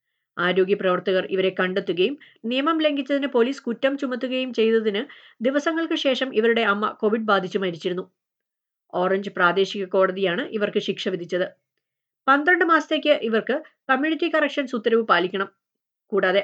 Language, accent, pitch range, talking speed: Malayalam, native, 190-260 Hz, 115 wpm